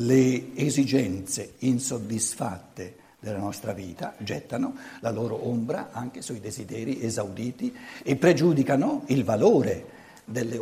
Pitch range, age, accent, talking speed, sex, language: 115-160 Hz, 60-79, native, 105 wpm, male, Italian